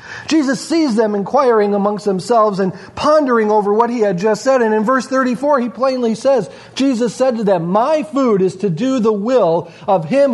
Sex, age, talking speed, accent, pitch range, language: male, 40-59, 195 wpm, American, 155-225 Hz, English